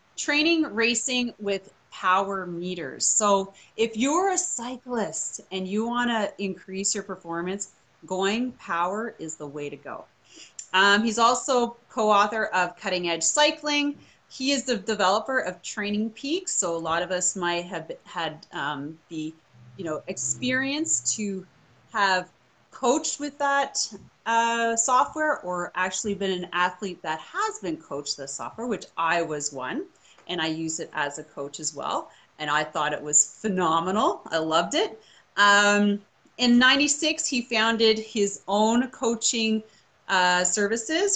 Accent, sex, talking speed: American, female, 145 wpm